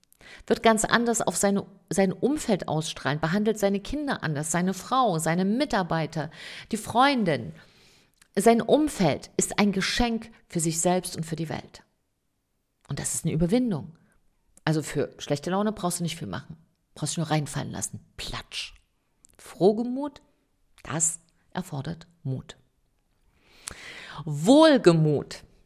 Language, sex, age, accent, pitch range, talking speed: German, female, 50-69, German, 160-210 Hz, 125 wpm